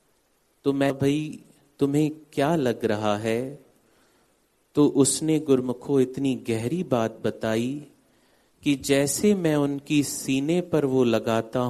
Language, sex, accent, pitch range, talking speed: Hindi, male, native, 120-155 Hz, 120 wpm